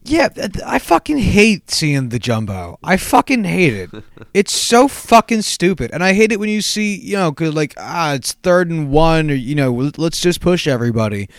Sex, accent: male, American